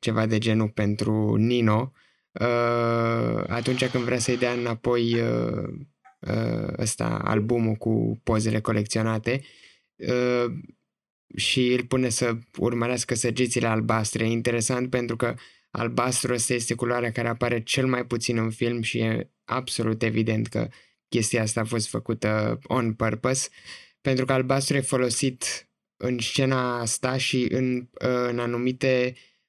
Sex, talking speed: male, 135 wpm